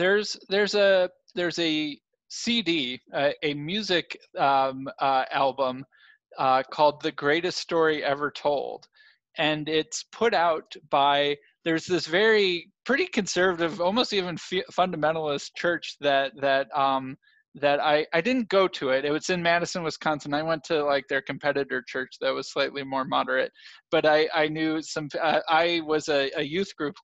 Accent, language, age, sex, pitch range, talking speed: American, English, 20-39, male, 140-185 Hz, 160 wpm